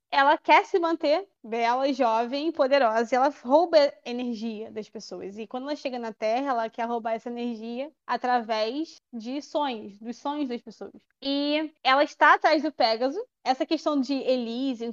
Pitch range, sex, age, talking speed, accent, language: 225-300 Hz, female, 20-39, 170 wpm, Brazilian, Portuguese